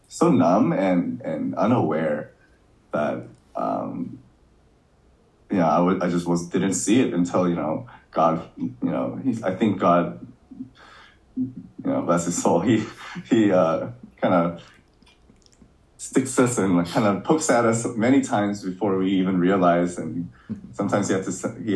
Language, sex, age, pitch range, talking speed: English, male, 20-39, 85-105 Hz, 155 wpm